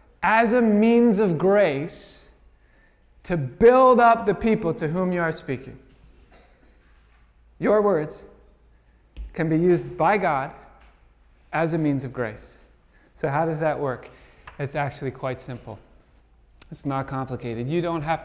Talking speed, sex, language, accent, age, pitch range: 140 wpm, male, English, American, 30-49, 135-195 Hz